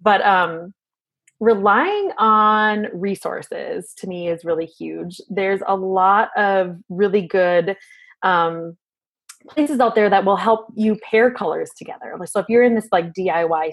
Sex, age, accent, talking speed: female, 20-39, American, 150 wpm